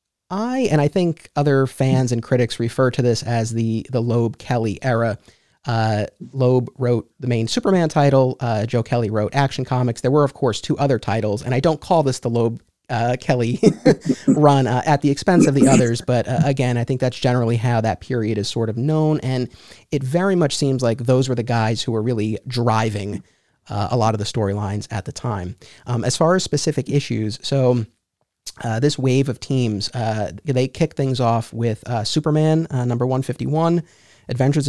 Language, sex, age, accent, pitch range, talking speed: English, male, 30-49, American, 110-140 Hz, 195 wpm